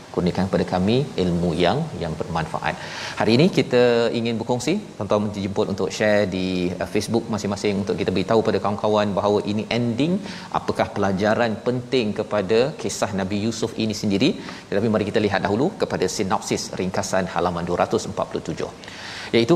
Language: Malayalam